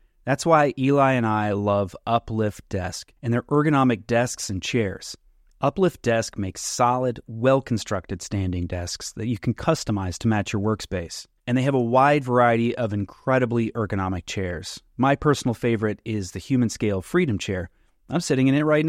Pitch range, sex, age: 100-135 Hz, male, 30-49